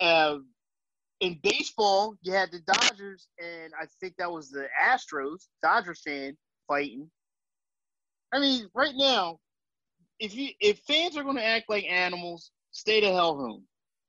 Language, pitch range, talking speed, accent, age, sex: English, 180-250 Hz, 145 wpm, American, 30-49, male